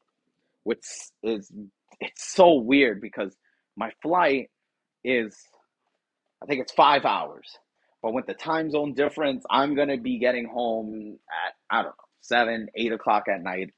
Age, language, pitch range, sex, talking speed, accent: 30-49, English, 110-135 Hz, male, 150 wpm, American